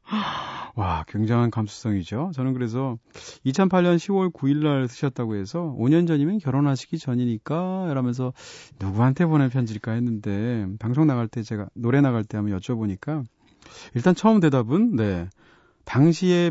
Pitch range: 110-160 Hz